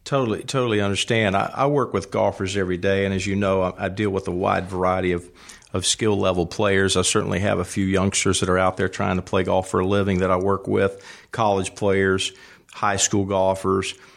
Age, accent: 50-69, American